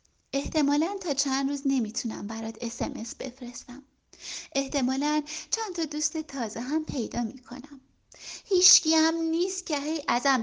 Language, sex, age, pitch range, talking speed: Persian, female, 30-49, 255-345 Hz, 125 wpm